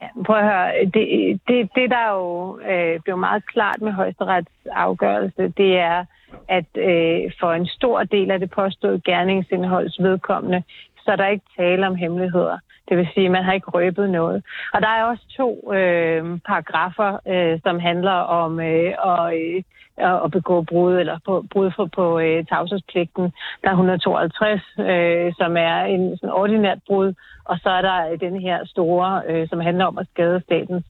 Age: 30-49